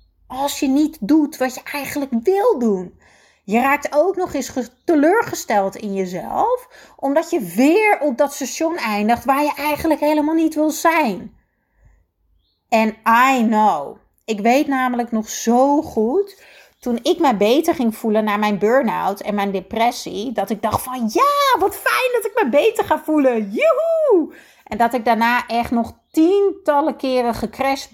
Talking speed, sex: 160 wpm, female